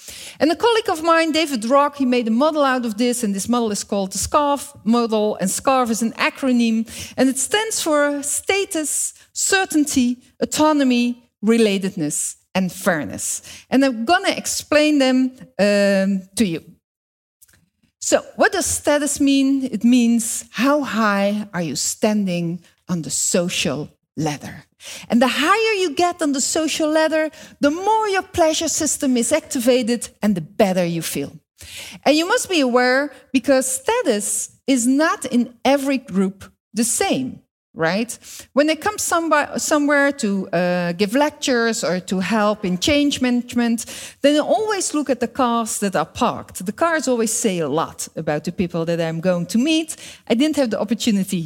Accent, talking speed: Dutch, 165 wpm